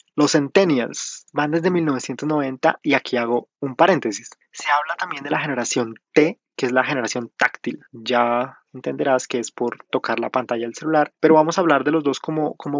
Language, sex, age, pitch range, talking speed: Spanish, male, 20-39, 130-165 Hz, 190 wpm